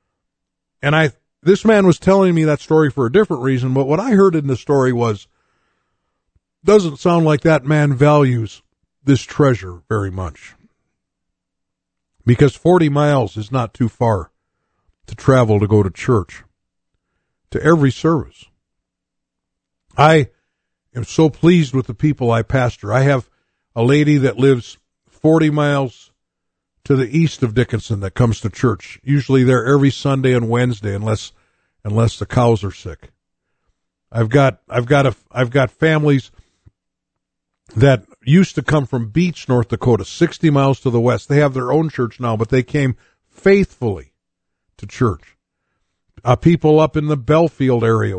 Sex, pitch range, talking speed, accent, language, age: male, 100-150 Hz, 155 wpm, American, English, 50-69